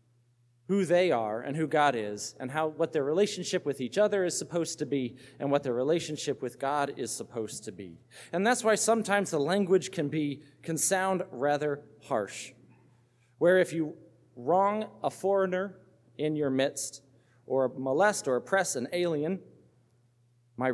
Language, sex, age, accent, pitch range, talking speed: English, male, 40-59, American, 120-180 Hz, 165 wpm